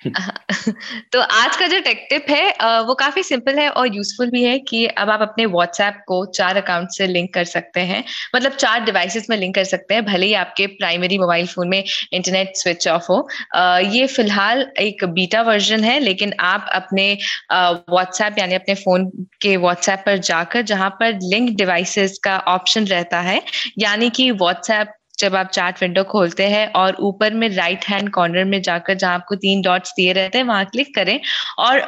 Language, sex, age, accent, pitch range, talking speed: Hindi, female, 20-39, native, 185-230 Hz, 190 wpm